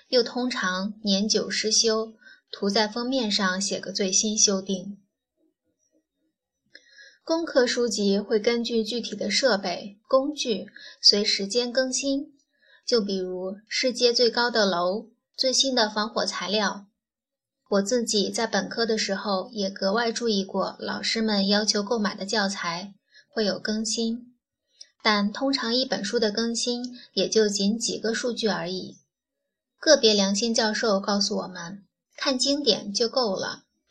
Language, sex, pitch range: Chinese, female, 200-245 Hz